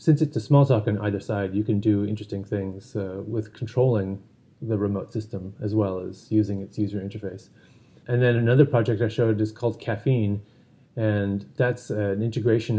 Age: 30-49